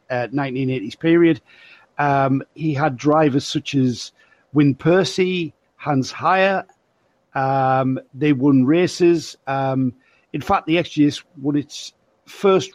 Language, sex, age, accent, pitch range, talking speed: English, male, 50-69, British, 130-155 Hz, 120 wpm